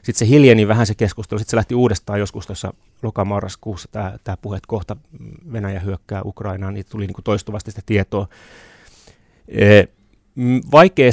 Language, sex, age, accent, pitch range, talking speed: Finnish, male, 30-49, native, 100-120 Hz, 160 wpm